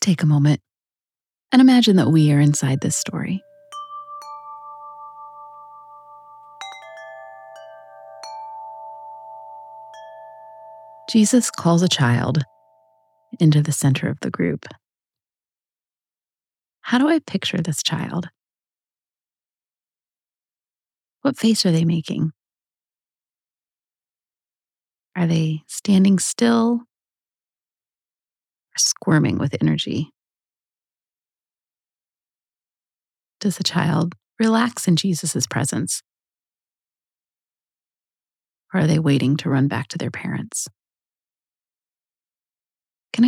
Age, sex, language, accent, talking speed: 30-49, female, English, American, 80 wpm